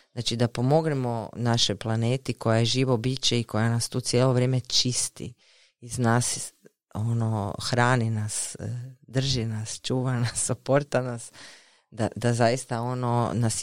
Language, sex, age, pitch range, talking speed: Croatian, female, 20-39, 120-150 Hz, 140 wpm